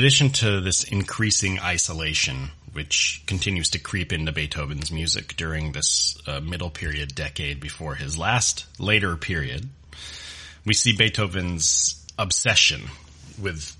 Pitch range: 75-95 Hz